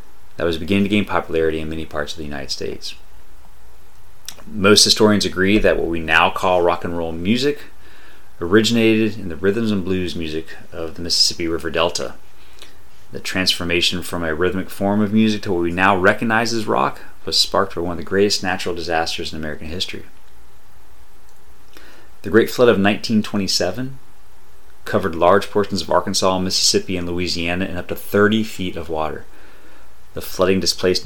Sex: male